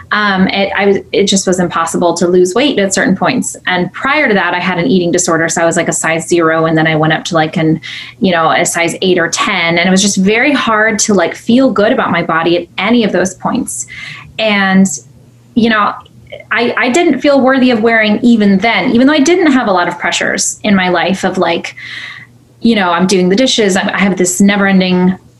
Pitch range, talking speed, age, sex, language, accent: 170-210 Hz, 235 wpm, 20-39, female, English, American